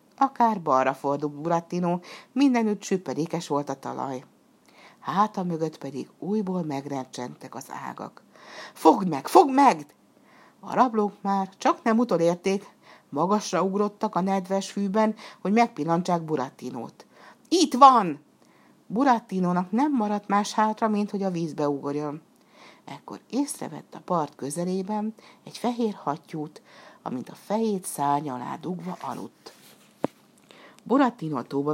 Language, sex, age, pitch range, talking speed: Hungarian, female, 60-79, 150-215 Hz, 125 wpm